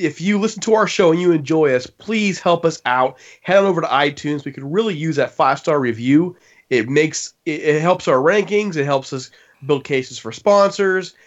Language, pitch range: English, 135-170 Hz